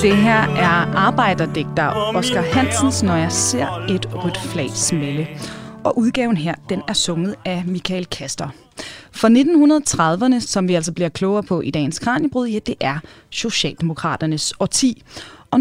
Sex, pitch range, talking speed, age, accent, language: female, 175-255 Hz, 150 wpm, 30-49, native, Danish